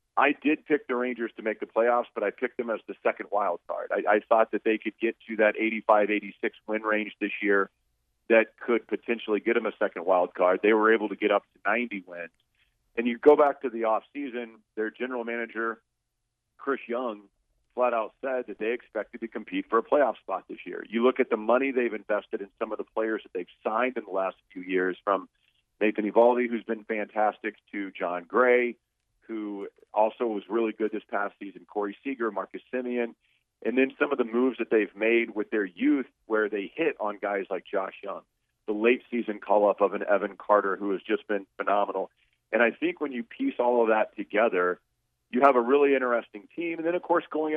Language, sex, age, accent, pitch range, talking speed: English, male, 40-59, American, 105-125 Hz, 215 wpm